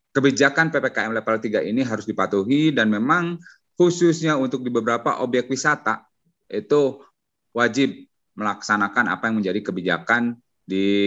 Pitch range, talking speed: 105-135 Hz, 125 wpm